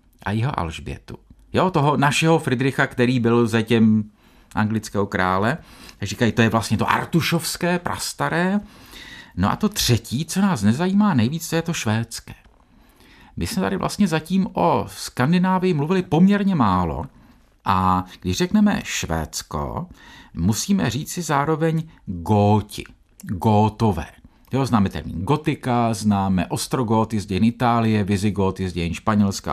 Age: 50-69